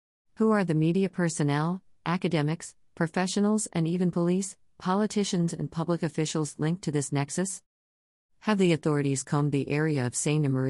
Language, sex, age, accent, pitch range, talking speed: English, female, 40-59, American, 135-165 Hz, 145 wpm